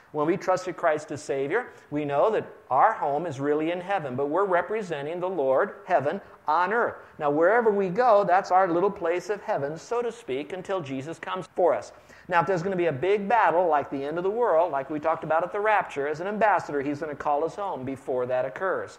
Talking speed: 235 wpm